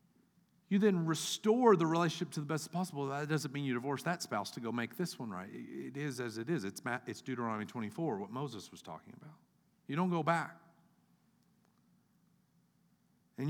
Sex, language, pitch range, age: male, English, 130-195 Hz, 50-69